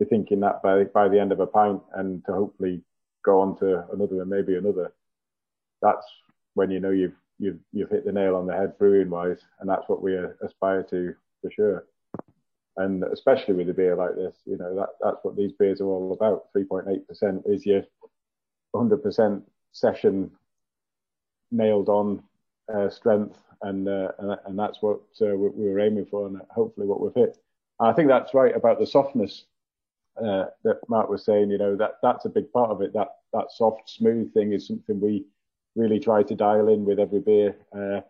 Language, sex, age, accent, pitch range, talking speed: English, male, 30-49, British, 95-110 Hz, 190 wpm